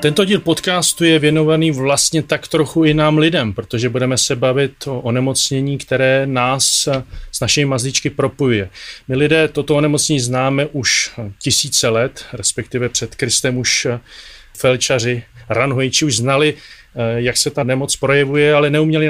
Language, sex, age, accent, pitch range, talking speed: Czech, male, 30-49, native, 125-145 Hz, 145 wpm